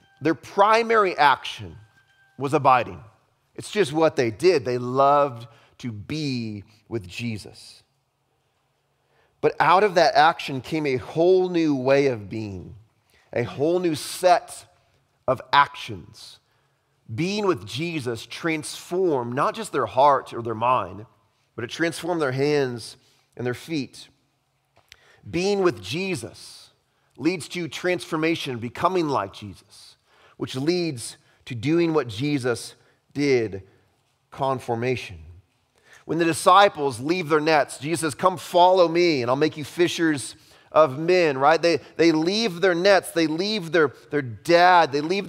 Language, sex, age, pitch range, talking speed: English, male, 30-49, 120-170 Hz, 135 wpm